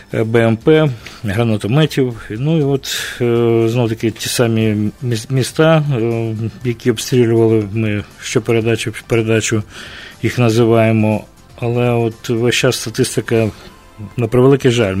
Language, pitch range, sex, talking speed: English, 110-125 Hz, male, 105 wpm